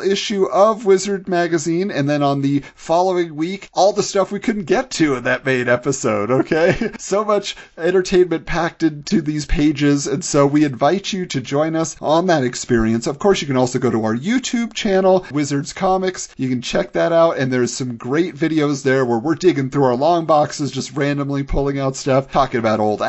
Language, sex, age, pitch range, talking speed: English, male, 40-59, 140-185 Hz, 205 wpm